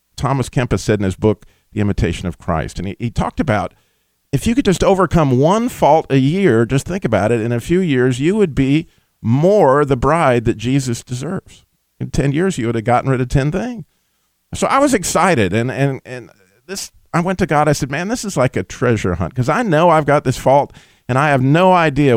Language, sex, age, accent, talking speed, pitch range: English, male, 40-59, American, 230 wpm, 105-150 Hz